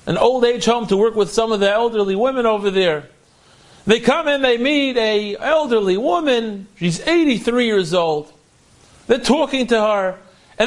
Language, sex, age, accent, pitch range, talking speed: English, male, 40-59, American, 195-300 Hz, 175 wpm